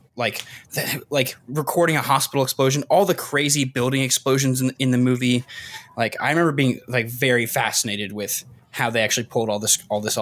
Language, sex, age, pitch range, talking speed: English, male, 20-39, 115-135 Hz, 190 wpm